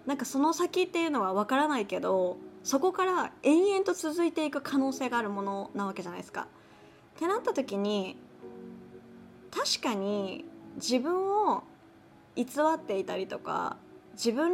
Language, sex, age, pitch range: Japanese, female, 20-39, 205-310 Hz